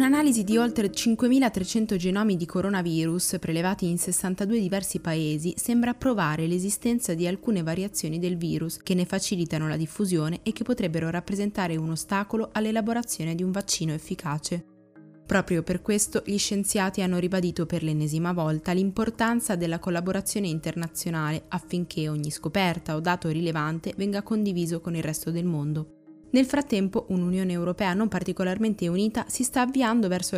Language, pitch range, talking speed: Italian, 165-200 Hz, 145 wpm